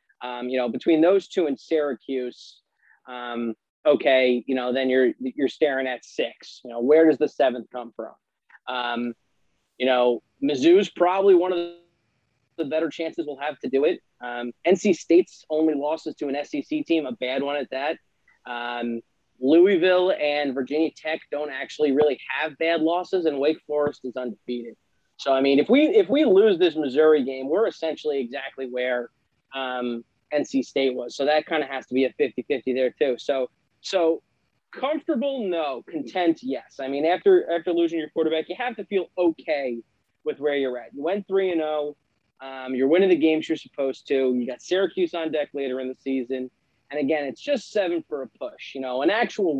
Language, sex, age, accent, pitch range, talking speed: English, male, 20-39, American, 130-170 Hz, 190 wpm